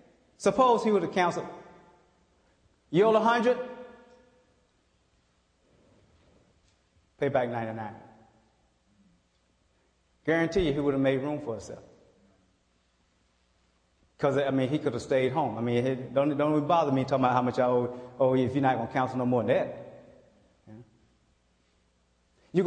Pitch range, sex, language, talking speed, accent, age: 125-180 Hz, male, English, 140 wpm, American, 30-49